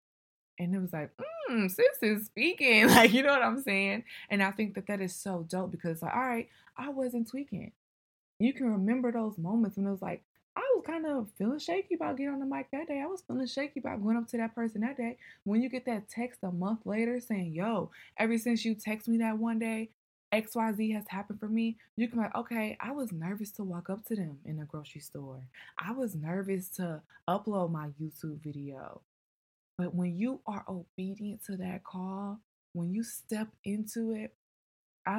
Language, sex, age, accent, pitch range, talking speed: English, female, 20-39, American, 170-230 Hz, 215 wpm